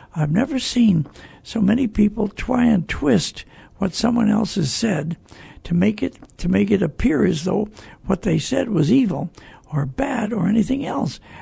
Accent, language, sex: American, English, male